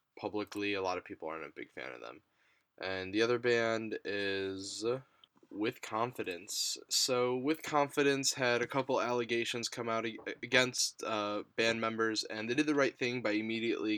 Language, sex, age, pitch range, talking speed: English, male, 10-29, 100-120 Hz, 170 wpm